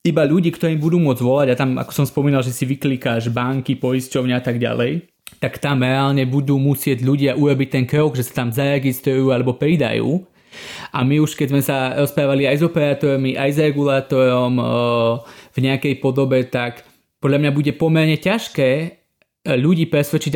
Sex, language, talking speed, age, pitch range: male, Slovak, 170 wpm, 20-39, 125-145 Hz